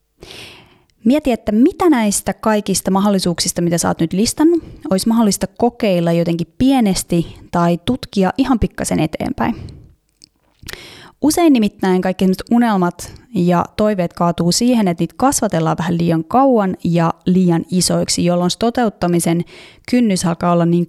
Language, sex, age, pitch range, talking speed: Finnish, female, 20-39, 170-210 Hz, 130 wpm